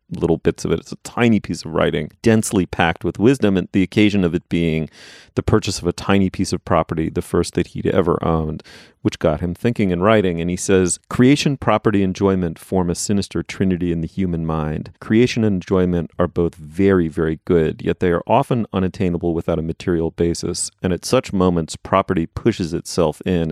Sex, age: male, 40-59